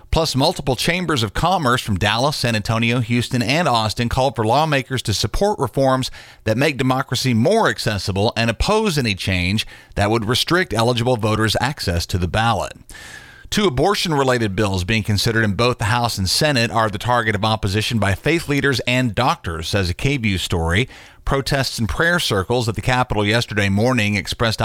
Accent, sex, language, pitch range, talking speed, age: American, male, English, 105-135 Hz, 175 wpm, 40-59